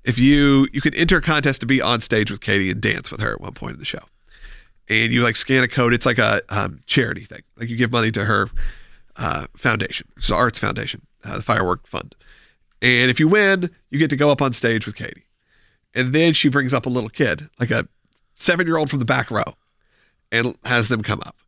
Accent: American